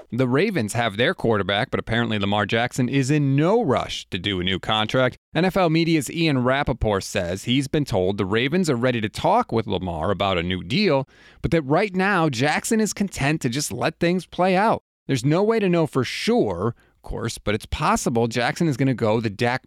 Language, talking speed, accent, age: English, 210 wpm, American, 30-49